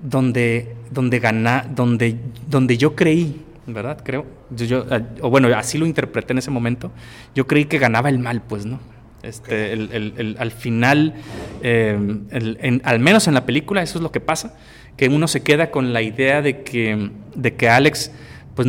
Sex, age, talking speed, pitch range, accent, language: male, 30-49, 190 wpm, 120-160 Hz, Mexican, Spanish